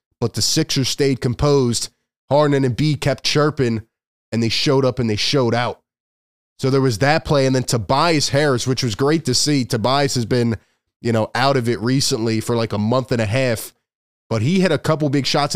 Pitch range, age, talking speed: 120-145 Hz, 20-39, 210 wpm